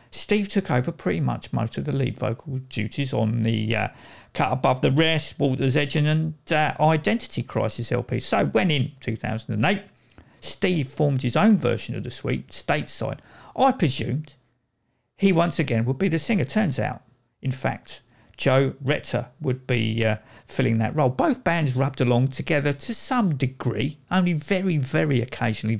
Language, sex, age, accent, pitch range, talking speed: English, male, 50-69, British, 120-165 Hz, 165 wpm